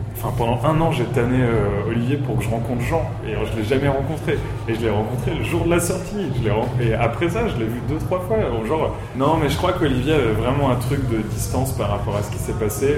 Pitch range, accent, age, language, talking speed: 105-125 Hz, French, 20-39, French, 270 wpm